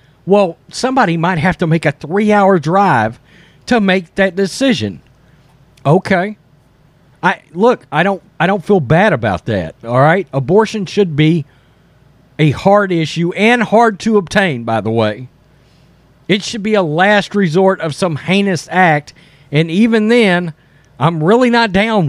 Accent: American